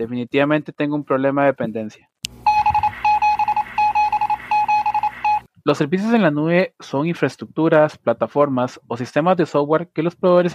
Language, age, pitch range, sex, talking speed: Spanish, 30-49, 140-195 Hz, male, 120 wpm